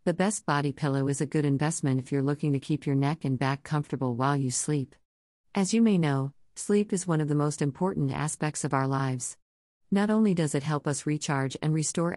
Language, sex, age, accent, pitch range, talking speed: English, female, 50-69, American, 130-165 Hz, 220 wpm